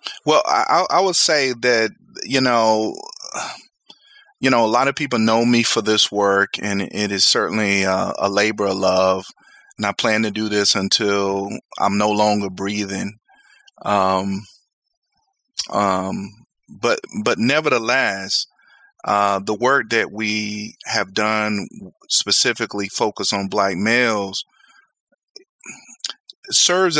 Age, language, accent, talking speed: 30-49, English, American, 125 wpm